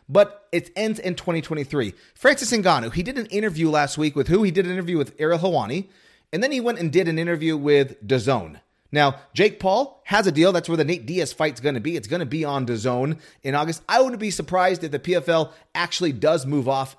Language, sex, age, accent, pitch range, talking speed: English, male, 30-49, American, 145-195 Hz, 225 wpm